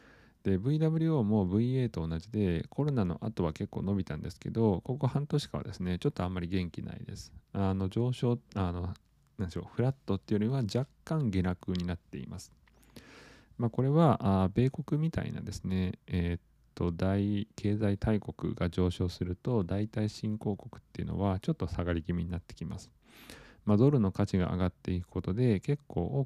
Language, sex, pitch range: Japanese, male, 90-115 Hz